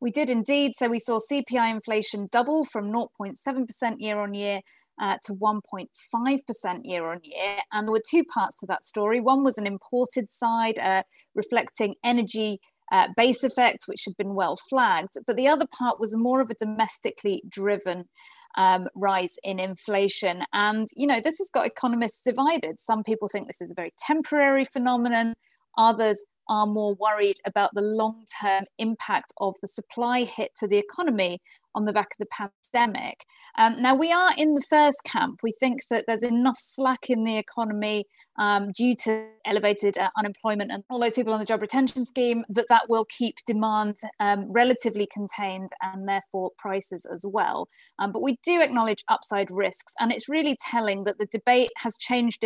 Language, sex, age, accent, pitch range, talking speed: English, female, 30-49, British, 200-245 Hz, 180 wpm